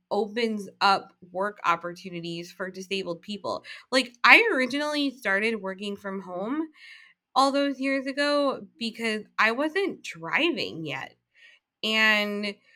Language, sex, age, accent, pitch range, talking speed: English, female, 20-39, American, 190-260 Hz, 115 wpm